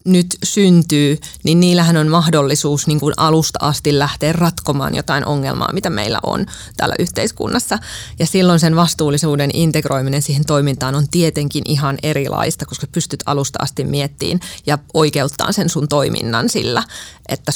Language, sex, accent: Finnish, female, native